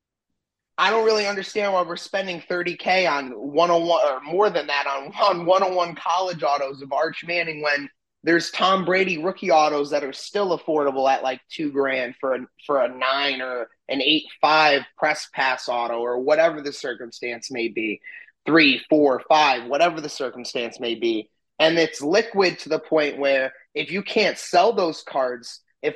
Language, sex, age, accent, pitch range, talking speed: English, male, 20-39, American, 140-170 Hz, 175 wpm